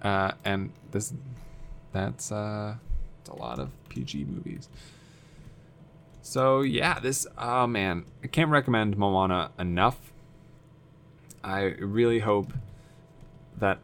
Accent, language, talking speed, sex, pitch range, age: American, English, 105 wpm, male, 100-150 Hz, 20-39